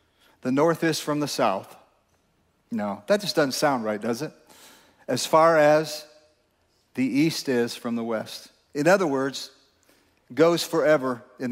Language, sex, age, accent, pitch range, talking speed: English, male, 40-59, American, 125-140 Hz, 150 wpm